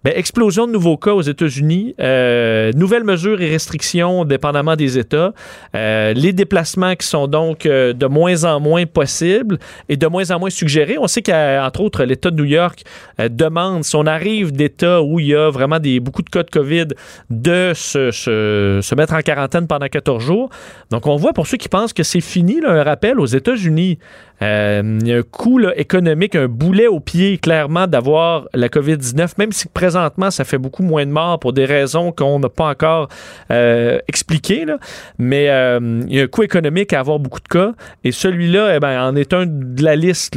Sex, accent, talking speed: male, Canadian, 200 wpm